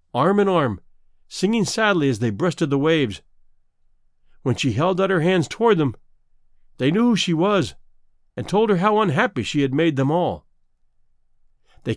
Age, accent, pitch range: 50-69, American, 115-195 Hz